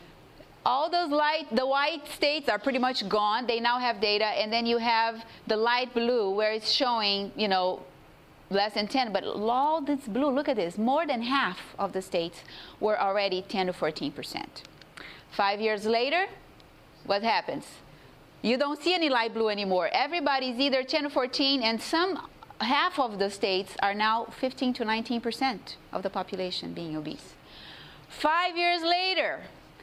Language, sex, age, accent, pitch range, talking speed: English, female, 30-49, Brazilian, 215-300 Hz, 165 wpm